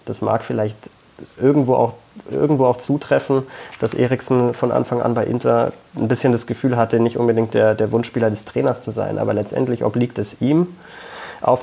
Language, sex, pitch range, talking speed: German, male, 115-130 Hz, 180 wpm